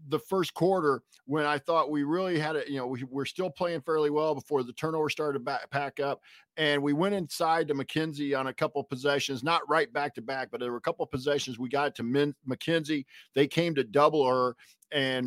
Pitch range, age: 120-150 Hz, 50-69